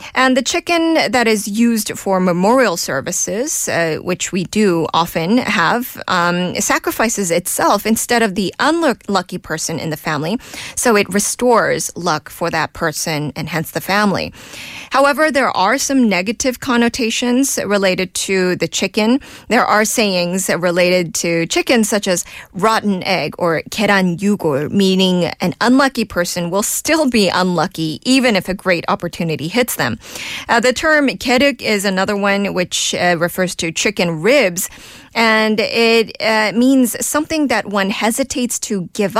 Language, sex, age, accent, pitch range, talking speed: English, female, 20-39, American, 175-235 Hz, 150 wpm